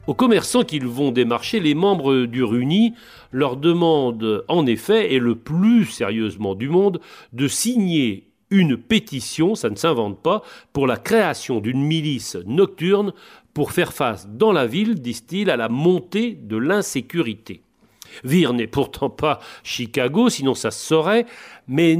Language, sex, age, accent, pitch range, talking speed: French, male, 40-59, French, 125-195 Hz, 150 wpm